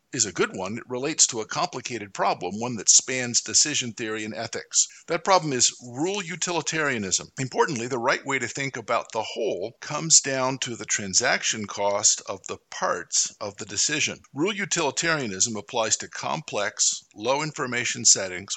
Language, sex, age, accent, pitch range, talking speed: English, male, 50-69, American, 110-135 Hz, 165 wpm